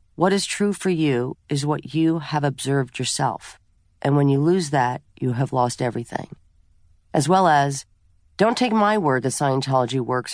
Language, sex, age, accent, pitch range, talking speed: English, female, 40-59, American, 125-165 Hz, 175 wpm